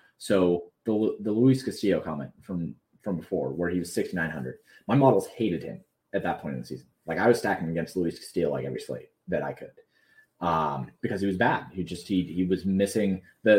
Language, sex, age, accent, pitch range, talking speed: English, male, 30-49, American, 85-105 Hz, 210 wpm